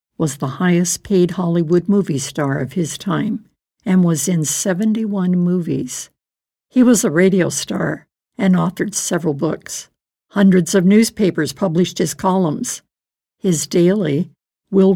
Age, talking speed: 60-79, 130 wpm